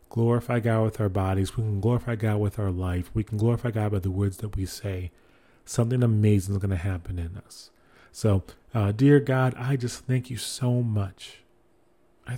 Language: English